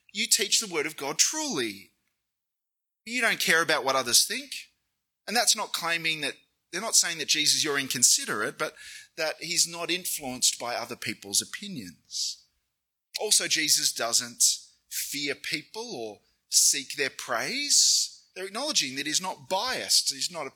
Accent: Australian